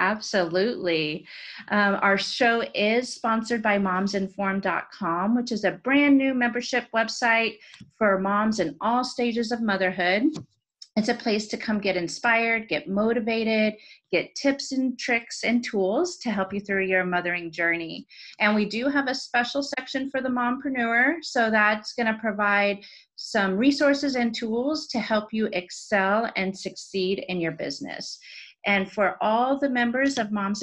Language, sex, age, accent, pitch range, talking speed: English, female, 30-49, American, 190-240 Hz, 155 wpm